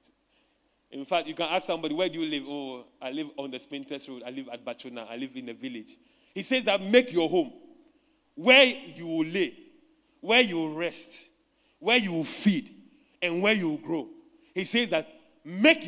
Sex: male